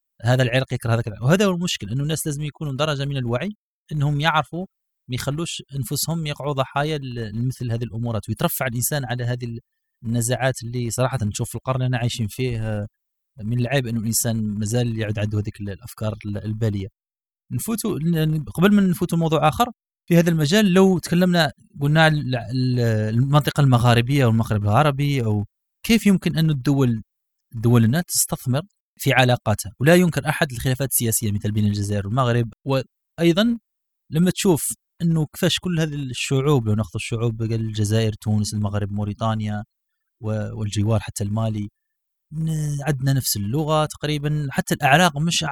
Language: Arabic